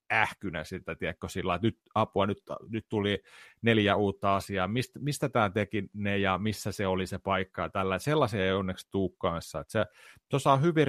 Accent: native